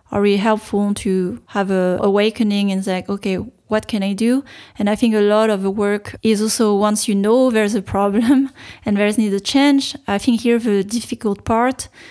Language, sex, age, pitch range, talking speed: English, female, 20-39, 200-230 Hz, 205 wpm